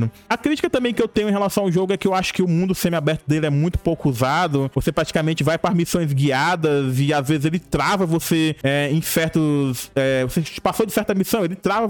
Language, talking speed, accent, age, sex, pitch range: Portuguese, 220 wpm, Brazilian, 20-39, male, 155-195 Hz